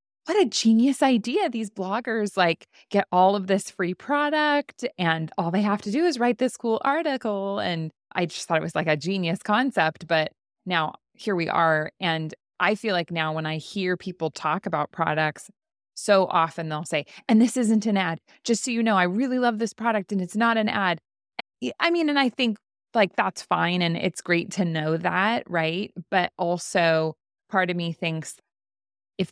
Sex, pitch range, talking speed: female, 165-225 Hz, 195 wpm